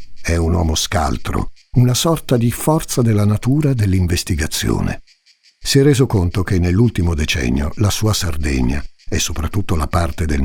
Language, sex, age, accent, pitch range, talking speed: Italian, male, 60-79, native, 80-115 Hz, 150 wpm